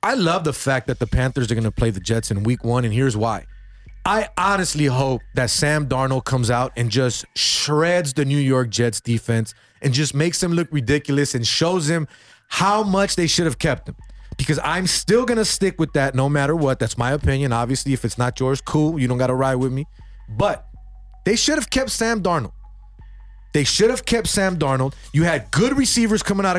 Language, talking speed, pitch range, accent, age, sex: English, 220 wpm, 125-205 Hz, American, 30-49, male